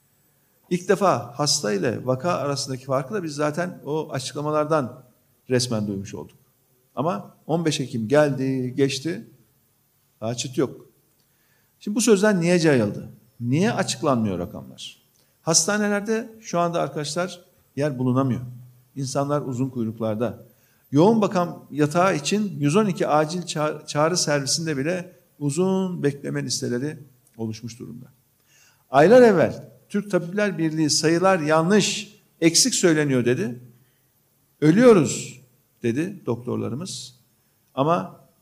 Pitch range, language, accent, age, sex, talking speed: 125-175 Hz, Turkish, native, 50-69, male, 105 wpm